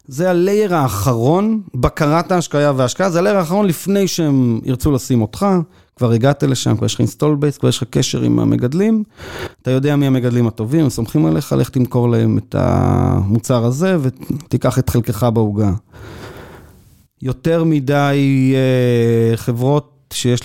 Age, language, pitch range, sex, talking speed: 30-49, Hebrew, 120-145 Hz, male, 145 wpm